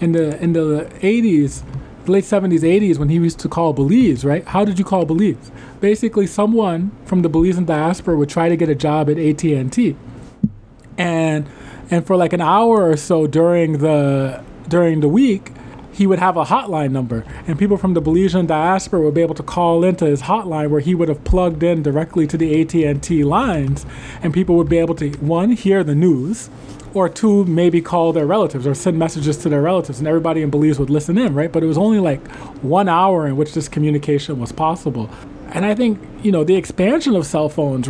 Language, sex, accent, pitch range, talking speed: English, male, American, 145-180 Hz, 210 wpm